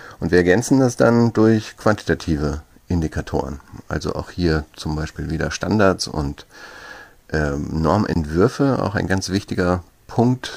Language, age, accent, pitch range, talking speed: German, 50-69, German, 75-95 Hz, 130 wpm